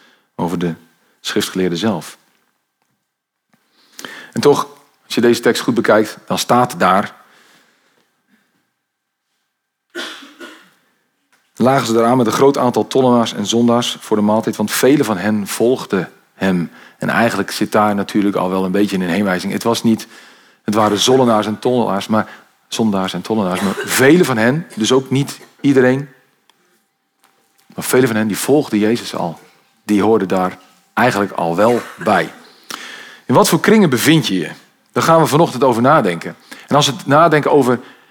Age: 40-59